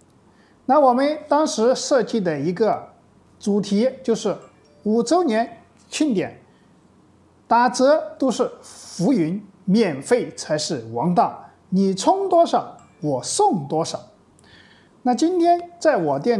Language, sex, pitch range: Chinese, male, 175-260 Hz